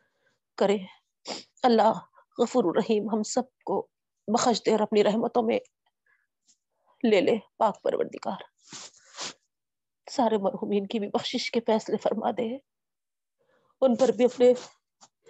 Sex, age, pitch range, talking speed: female, 40-59, 205-270 Hz, 45 wpm